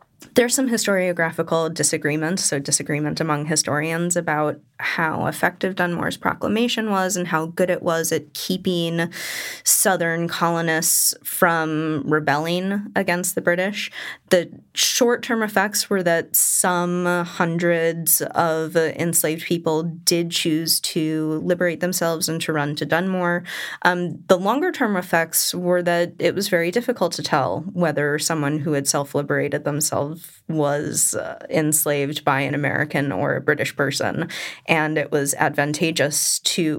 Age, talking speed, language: 20-39, 130 wpm, English